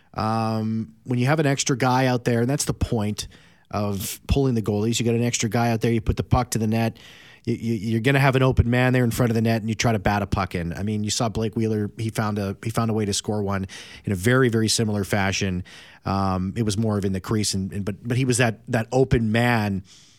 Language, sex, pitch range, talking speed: English, male, 110-140 Hz, 280 wpm